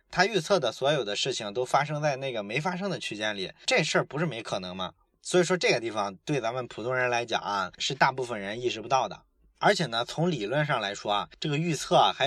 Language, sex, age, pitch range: Chinese, male, 20-39, 125-180 Hz